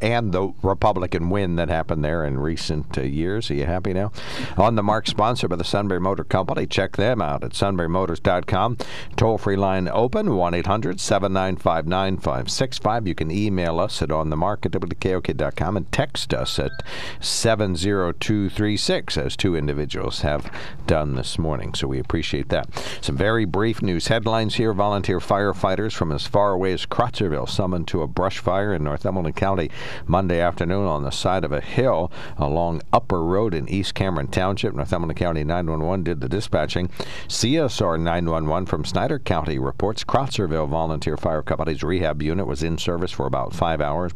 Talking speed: 160 wpm